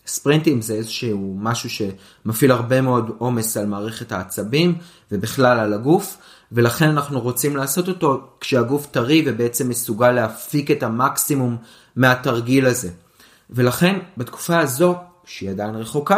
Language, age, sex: Hebrew, 30-49, male